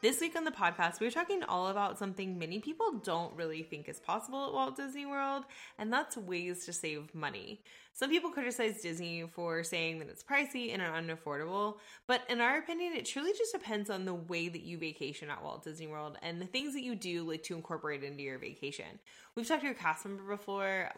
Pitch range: 155-215 Hz